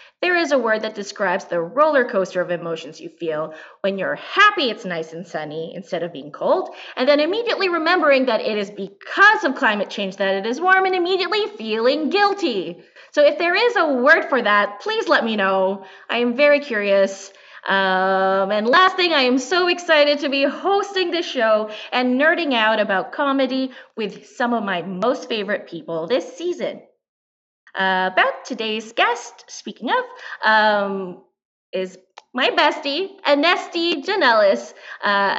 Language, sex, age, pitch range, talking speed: English, female, 20-39, 195-300 Hz, 170 wpm